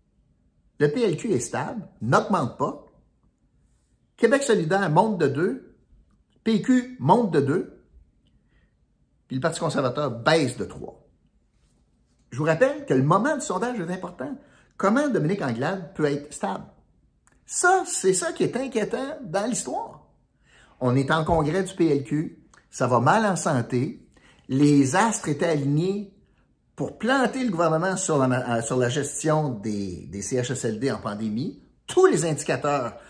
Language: French